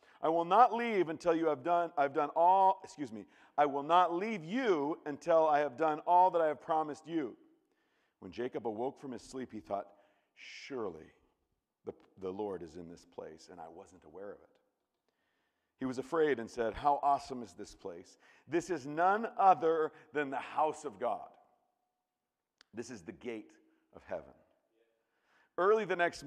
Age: 50-69